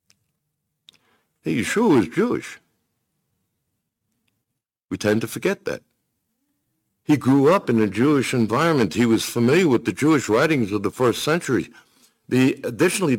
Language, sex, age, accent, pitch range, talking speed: English, male, 60-79, American, 105-140 Hz, 125 wpm